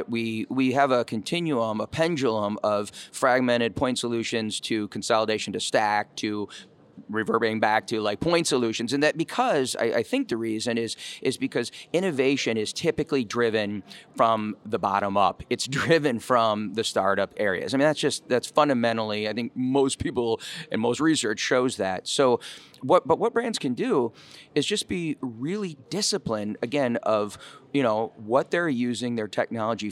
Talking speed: 165 wpm